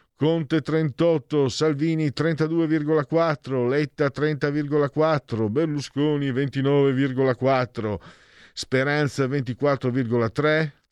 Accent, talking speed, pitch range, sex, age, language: native, 55 wpm, 105-150 Hz, male, 50-69, Italian